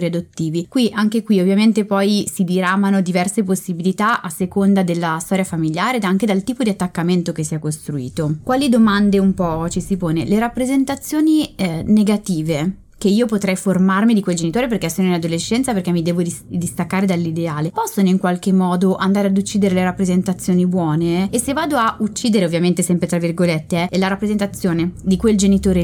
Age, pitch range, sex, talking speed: 20-39, 175-220 Hz, female, 185 wpm